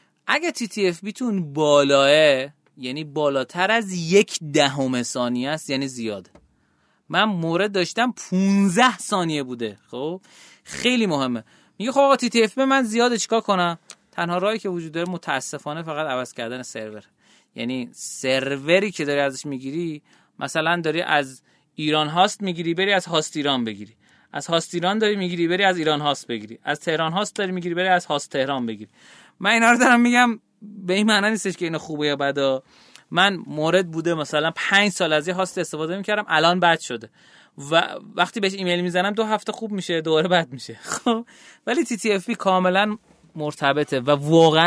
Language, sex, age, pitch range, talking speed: Persian, male, 30-49, 140-195 Hz, 175 wpm